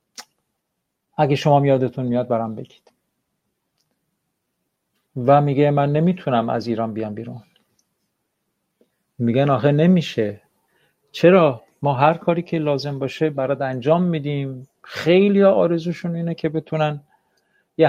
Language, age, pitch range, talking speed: Persian, 50-69, 130-160 Hz, 110 wpm